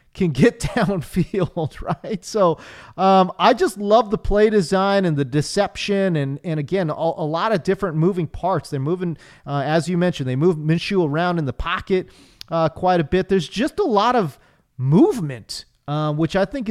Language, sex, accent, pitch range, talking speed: English, male, American, 145-195 Hz, 185 wpm